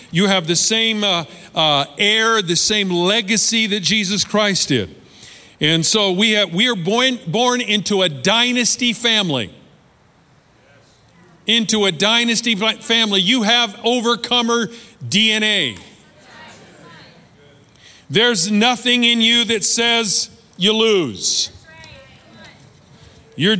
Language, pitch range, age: English, 180-230 Hz, 50-69